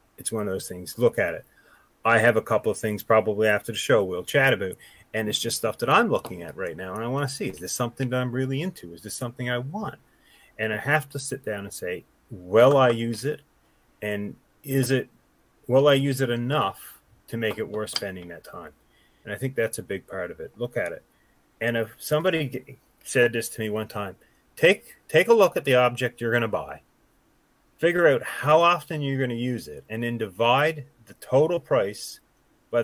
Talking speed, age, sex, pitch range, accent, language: 225 wpm, 30-49, male, 115-135 Hz, American, English